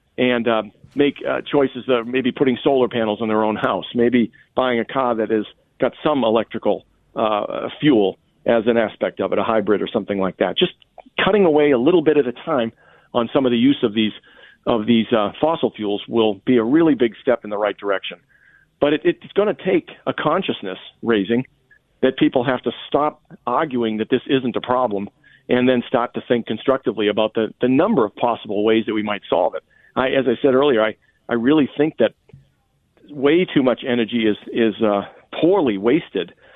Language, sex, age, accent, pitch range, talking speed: English, male, 50-69, American, 110-130 Hz, 205 wpm